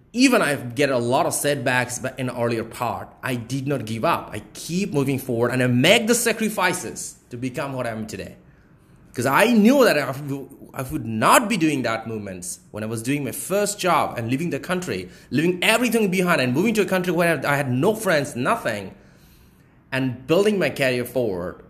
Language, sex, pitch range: English, male, 125-190 Hz